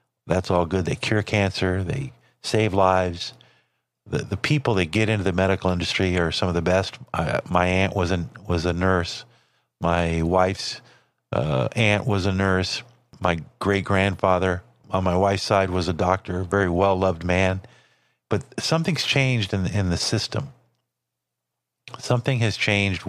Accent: American